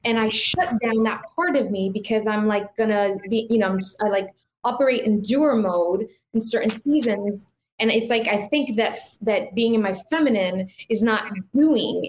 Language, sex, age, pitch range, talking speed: English, female, 20-39, 195-235 Hz, 200 wpm